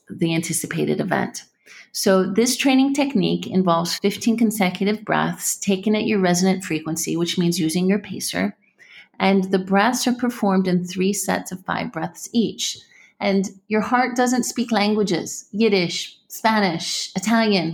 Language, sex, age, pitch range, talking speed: English, female, 30-49, 185-220 Hz, 140 wpm